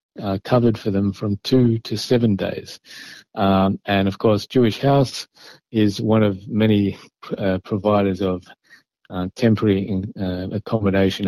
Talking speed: 140 wpm